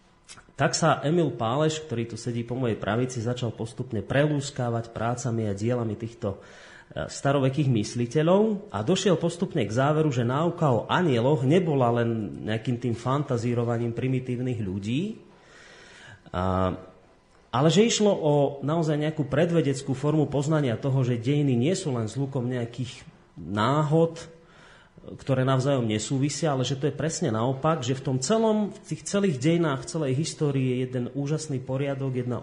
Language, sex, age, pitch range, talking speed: Slovak, male, 30-49, 120-160 Hz, 145 wpm